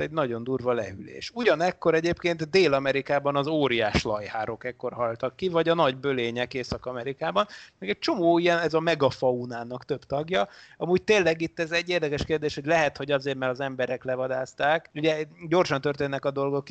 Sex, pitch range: male, 130-155 Hz